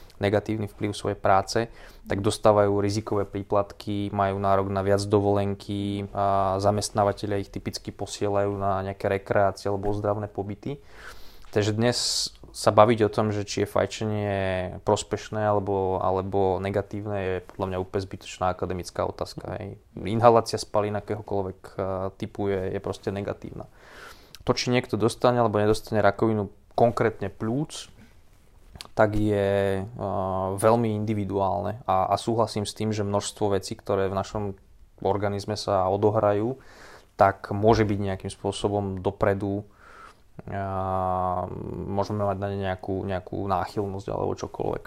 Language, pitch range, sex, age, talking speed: Slovak, 100-105 Hz, male, 20-39, 130 wpm